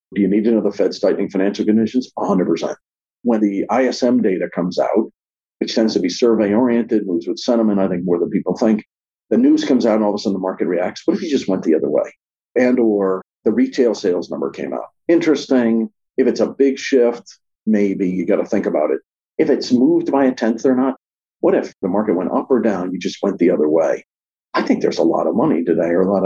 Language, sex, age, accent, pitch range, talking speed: English, male, 50-69, American, 95-130 Hz, 240 wpm